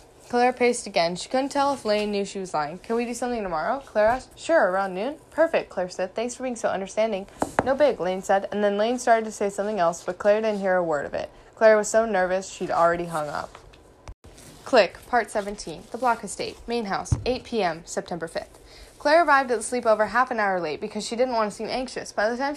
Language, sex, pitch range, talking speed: English, female, 185-235 Hz, 235 wpm